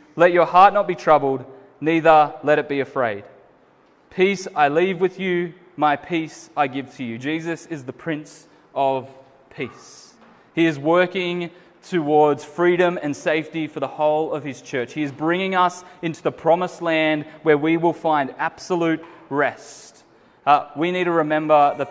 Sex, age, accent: male, 20-39, Australian